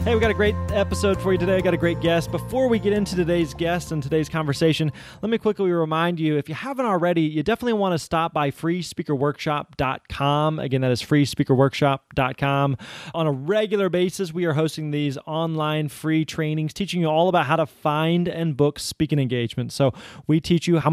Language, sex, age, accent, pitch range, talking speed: English, male, 20-39, American, 145-170 Hz, 200 wpm